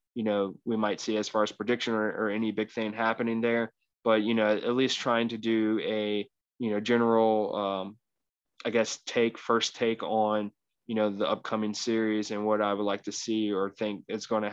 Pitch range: 110-125 Hz